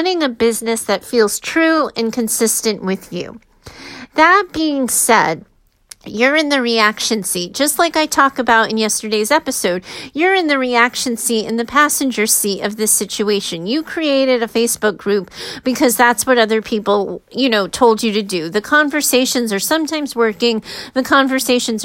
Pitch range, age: 220-265 Hz, 40-59